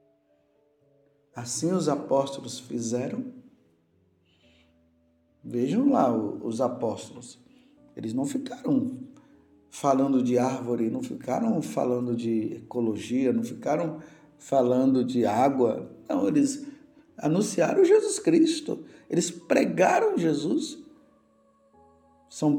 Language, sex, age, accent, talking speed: Portuguese, male, 50-69, Brazilian, 90 wpm